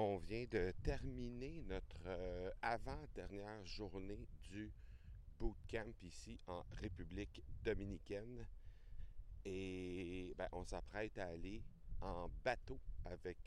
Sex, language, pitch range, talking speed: male, French, 85-105 Hz, 105 wpm